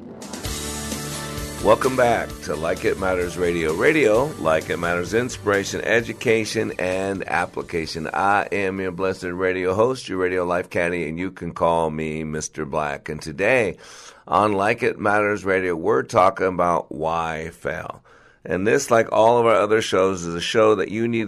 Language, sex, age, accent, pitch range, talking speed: English, male, 50-69, American, 90-110 Hz, 165 wpm